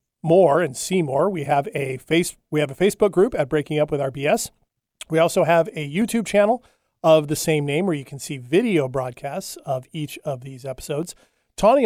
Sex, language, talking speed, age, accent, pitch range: male, English, 200 wpm, 40-59, American, 145-185 Hz